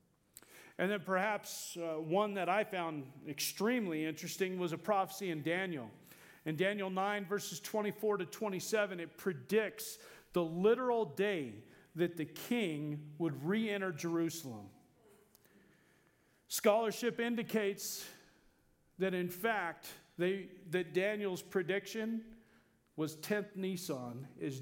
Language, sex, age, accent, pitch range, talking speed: English, male, 40-59, American, 155-205 Hz, 110 wpm